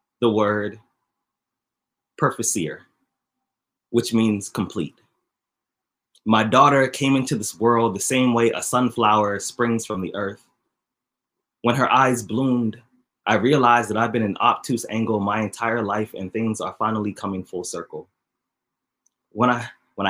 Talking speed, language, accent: 130 wpm, English, American